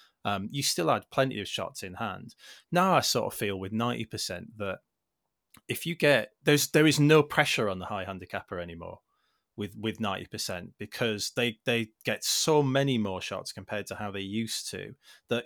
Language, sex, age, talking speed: English, male, 30-49, 195 wpm